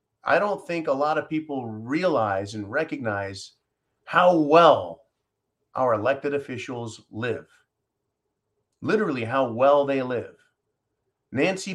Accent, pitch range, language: American, 110-160 Hz, English